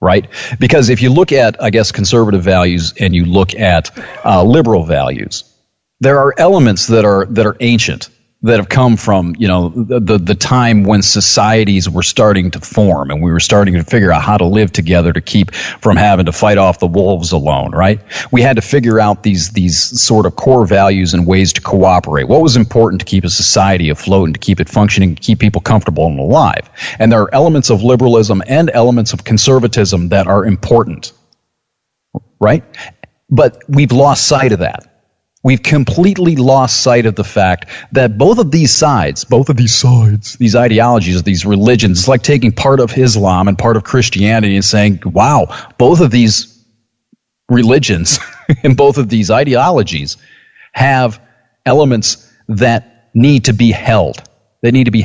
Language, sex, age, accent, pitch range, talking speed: English, male, 40-59, American, 95-125 Hz, 185 wpm